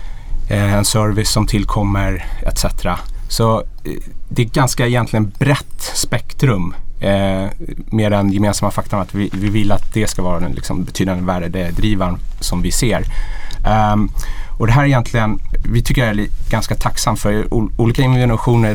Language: Swedish